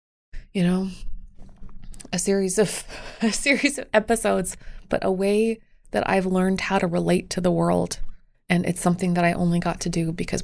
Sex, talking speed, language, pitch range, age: female, 180 wpm, English, 180-215 Hz, 20-39